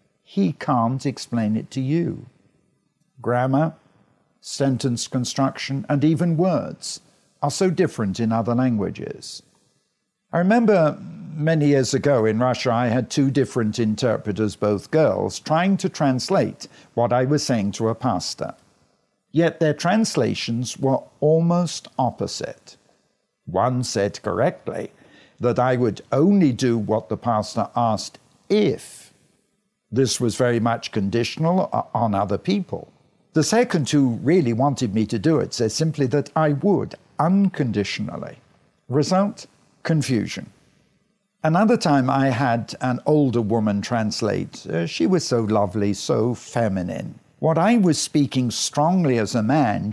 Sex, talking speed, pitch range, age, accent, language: male, 130 wpm, 115-160 Hz, 50-69, British, English